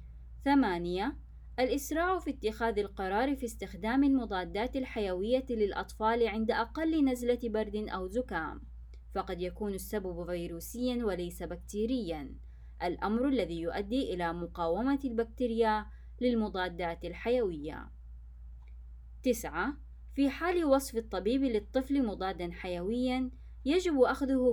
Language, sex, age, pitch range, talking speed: Arabic, female, 20-39, 180-255 Hz, 100 wpm